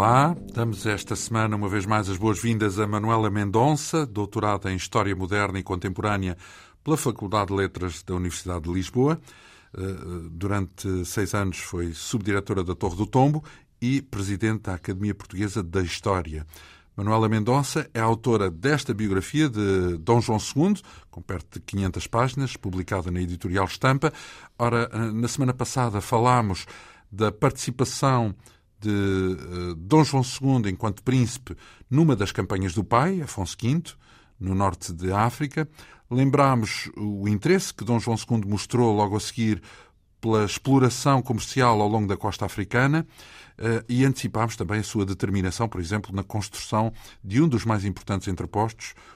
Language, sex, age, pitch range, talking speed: Portuguese, male, 50-69, 95-120 Hz, 150 wpm